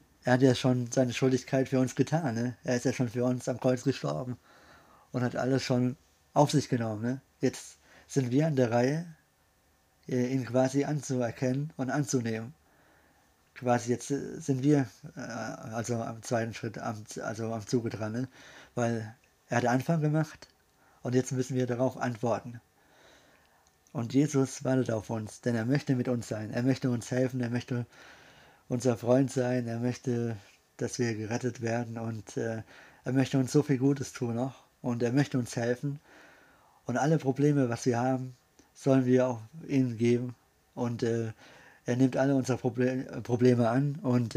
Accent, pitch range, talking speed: German, 120-135 Hz, 160 wpm